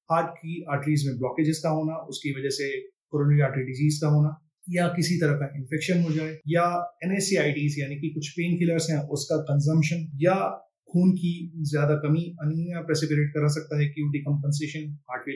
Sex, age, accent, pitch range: male, 30-49, native, 145-165 Hz